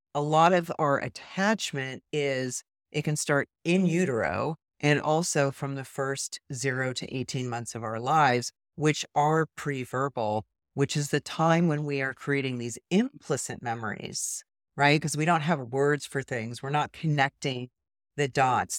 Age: 40-59